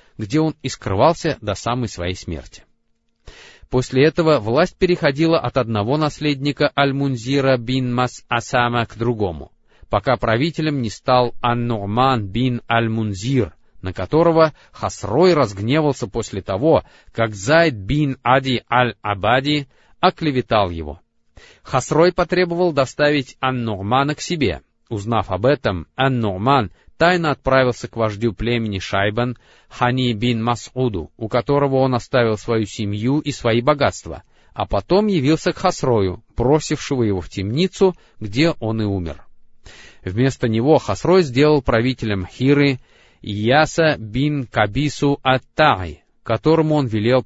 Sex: male